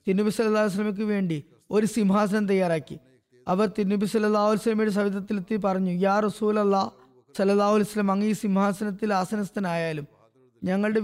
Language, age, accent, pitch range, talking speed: Malayalam, 20-39, native, 185-215 Hz, 125 wpm